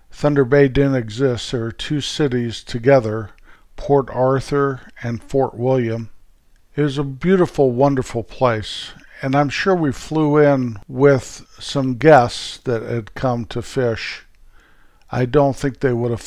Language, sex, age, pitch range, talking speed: English, male, 50-69, 115-145 Hz, 145 wpm